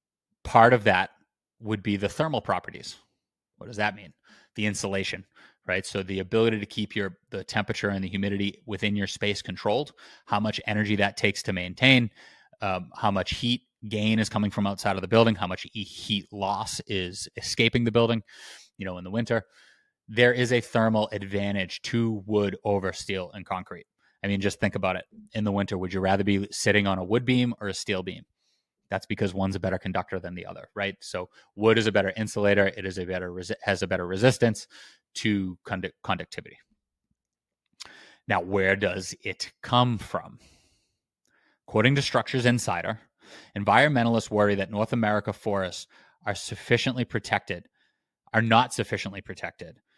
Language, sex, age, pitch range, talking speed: English, male, 30-49, 95-115 Hz, 175 wpm